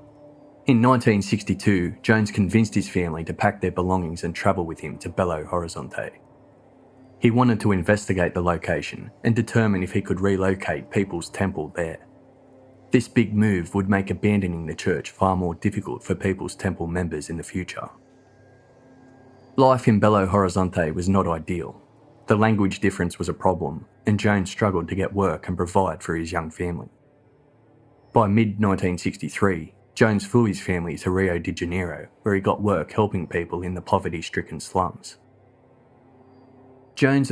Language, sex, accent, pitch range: English, male, Australian, 90-120 Hz